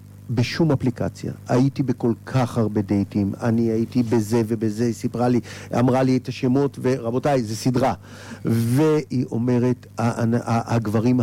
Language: Hebrew